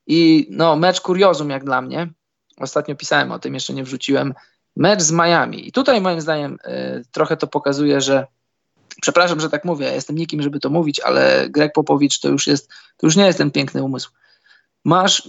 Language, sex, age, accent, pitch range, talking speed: Polish, male, 20-39, native, 140-170 Hz, 195 wpm